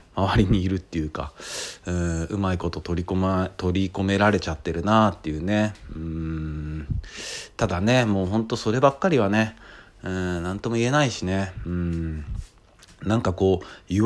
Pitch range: 85-110 Hz